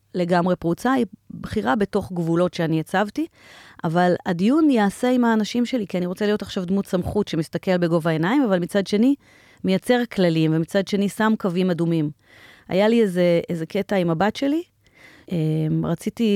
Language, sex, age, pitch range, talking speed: Hebrew, female, 30-49, 165-215 Hz, 160 wpm